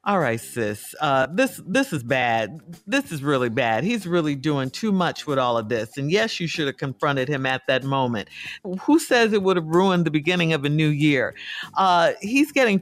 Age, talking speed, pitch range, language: 50-69, 215 wpm, 170-245 Hz, English